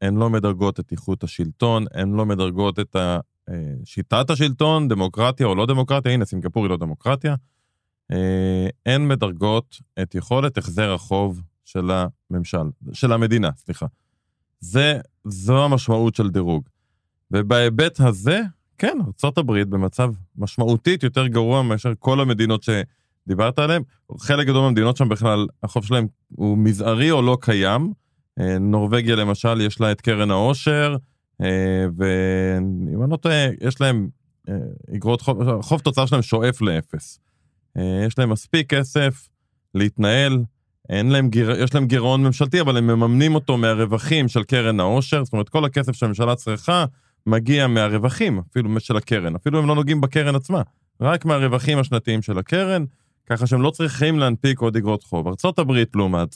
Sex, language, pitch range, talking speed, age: male, Hebrew, 100-135 Hz, 135 wpm, 20-39